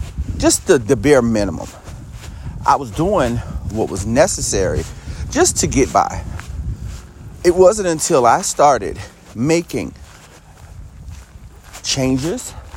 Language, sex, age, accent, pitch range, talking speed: English, male, 40-59, American, 95-140 Hz, 105 wpm